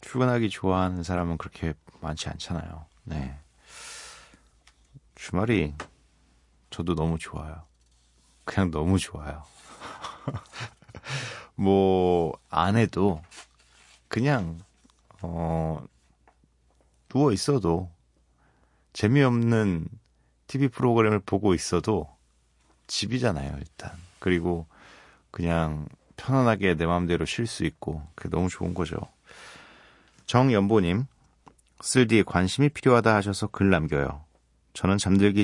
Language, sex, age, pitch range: Korean, male, 30-49, 75-100 Hz